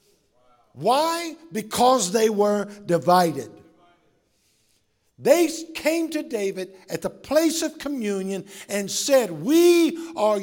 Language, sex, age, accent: English, male, 50-69, American